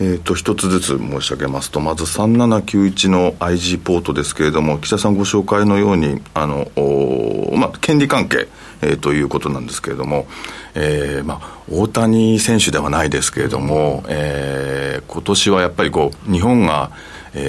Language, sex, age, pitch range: Japanese, male, 50-69, 75-105 Hz